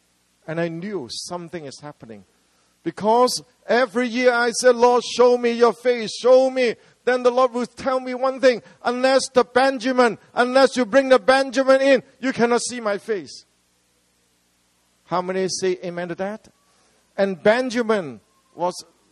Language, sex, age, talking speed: English, male, 50-69, 155 wpm